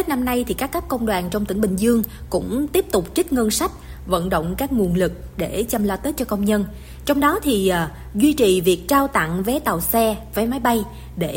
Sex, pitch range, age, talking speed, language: female, 185-250 Hz, 20-39, 245 wpm, Vietnamese